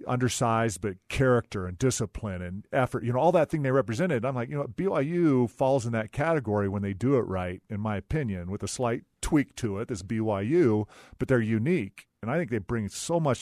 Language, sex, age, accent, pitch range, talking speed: English, male, 40-59, American, 105-135 Hz, 220 wpm